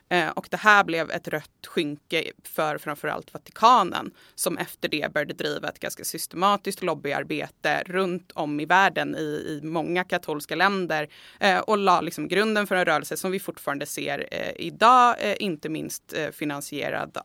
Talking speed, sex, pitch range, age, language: 150 wpm, female, 155-195 Hz, 20-39, Swedish